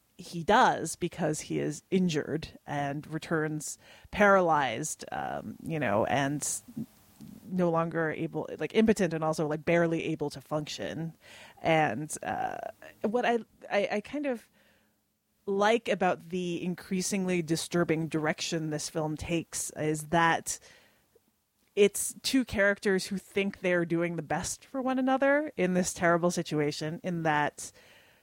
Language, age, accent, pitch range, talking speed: English, 30-49, American, 155-200 Hz, 130 wpm